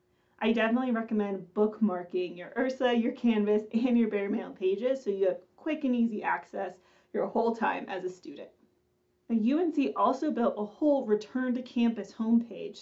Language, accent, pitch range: English, American, 195-250 Hz